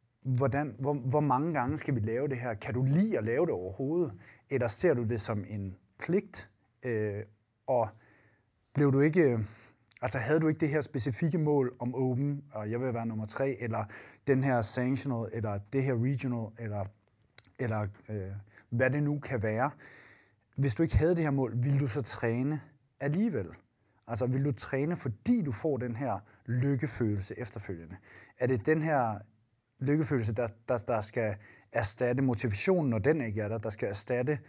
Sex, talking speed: male, 180 wpm